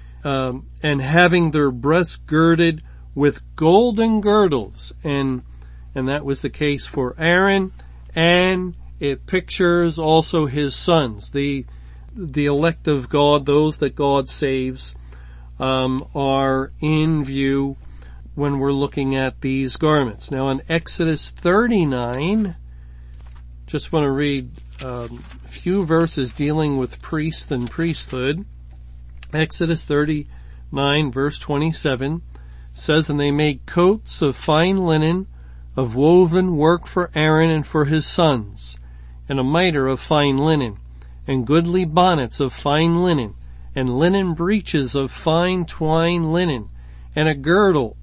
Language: English